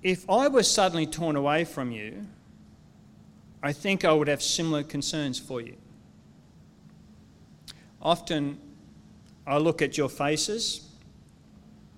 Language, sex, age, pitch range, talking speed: English, male, 40-59, 140-165 Hz, 115 wpm